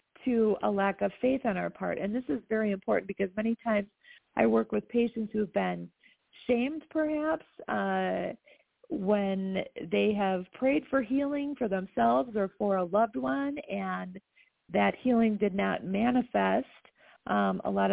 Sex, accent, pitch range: female, American, 195-240 Hz